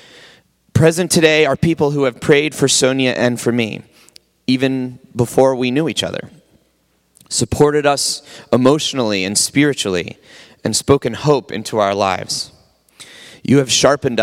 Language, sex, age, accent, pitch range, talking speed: English, male, 30-49, American, 110-135 Hz, 135 wpm